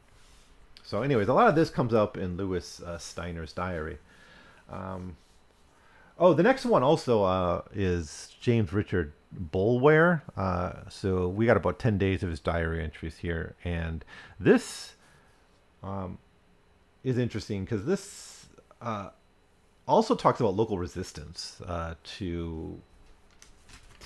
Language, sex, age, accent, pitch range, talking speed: English, male, 40-59, American, 85-105 Hz, 125 wpm